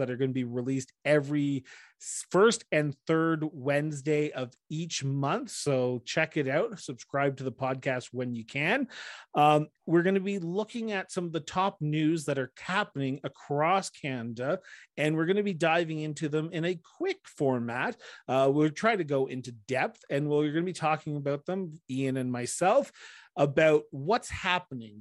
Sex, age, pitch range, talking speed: male, 30-49, 130-160 Hz, 170 wpm